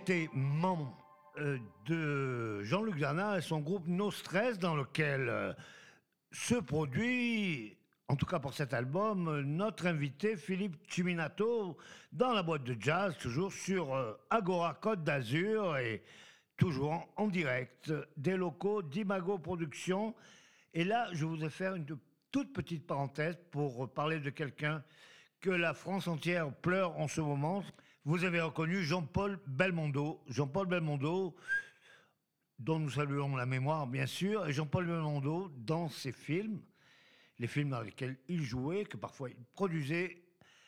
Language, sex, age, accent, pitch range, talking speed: French, male, 50-69, French, 145-185 Hz, 135 wpm